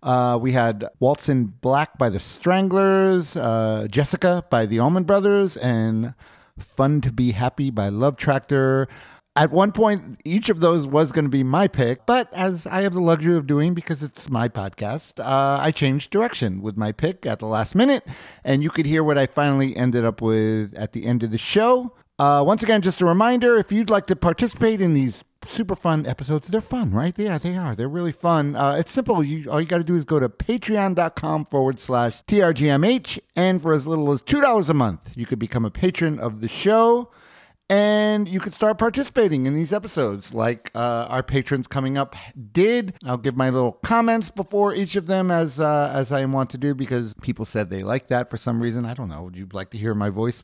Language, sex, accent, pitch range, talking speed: English, male, American, 125-180 Hz, 215 wpm